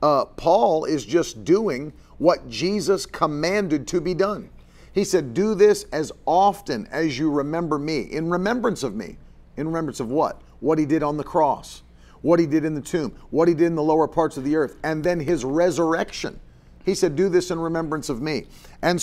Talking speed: 200 wpm